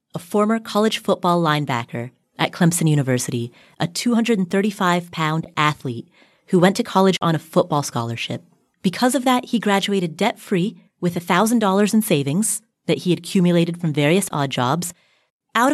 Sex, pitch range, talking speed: female, 175-220 Hz, 155 wpm